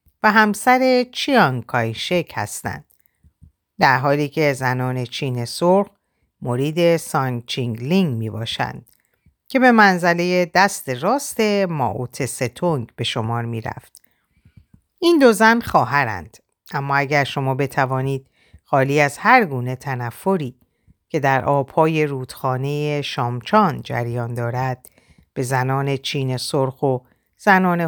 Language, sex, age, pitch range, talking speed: Persian, female, 50-69, 125-185 Hz, 110 wpm